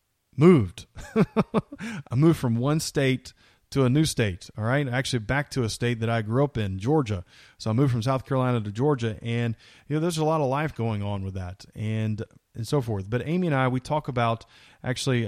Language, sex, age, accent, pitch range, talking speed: English, male, 30-49, American, 110-130 Hz, 215 wpm